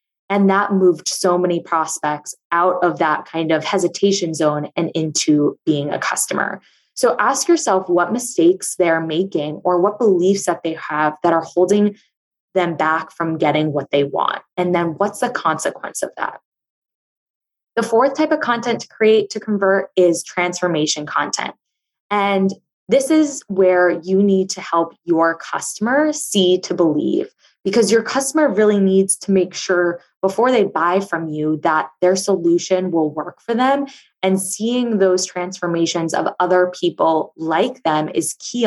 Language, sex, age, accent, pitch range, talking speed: English, female, 20-39, American, 165-210 Hz, 160 wpm